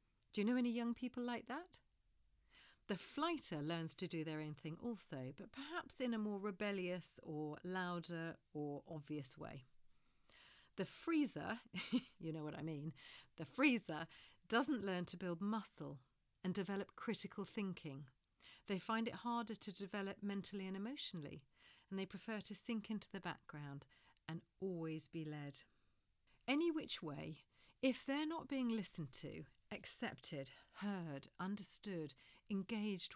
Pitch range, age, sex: 155-215 Hz, 40-59, female